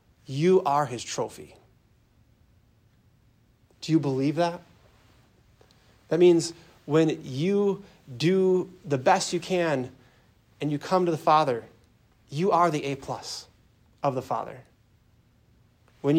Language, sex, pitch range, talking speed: English, male, 115-165 Hz, 120 wpm